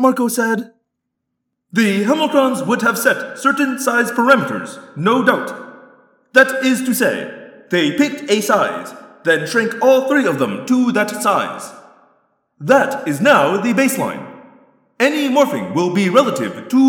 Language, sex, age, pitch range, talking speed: English, male, 30-49, 215-270 Hz, 140 wpm